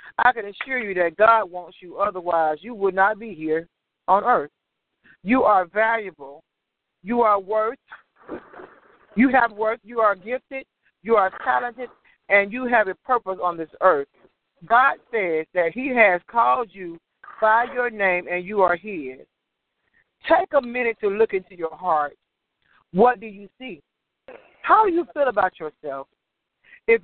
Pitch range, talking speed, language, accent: 175-235 Hz, 160 wpm, English, American